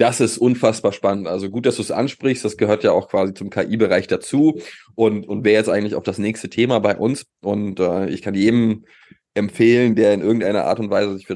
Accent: German